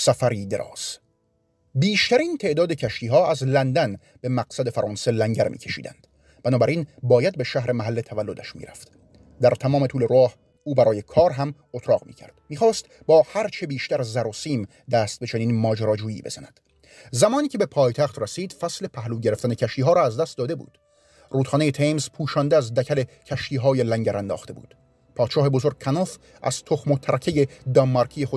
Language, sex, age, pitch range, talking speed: Persian, male, 30-49, 120-145 Hz, 160 wpm